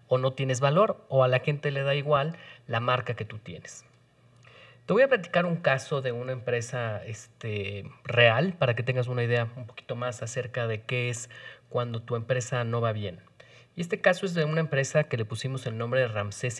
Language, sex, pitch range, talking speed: Spanish, male, 120-150 Hz, 215 wpm